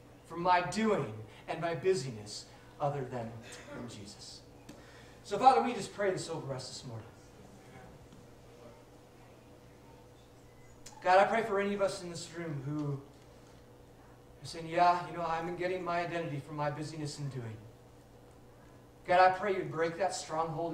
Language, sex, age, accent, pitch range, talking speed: English, male, 40-59, American, 135-190 Hz, 150 wpm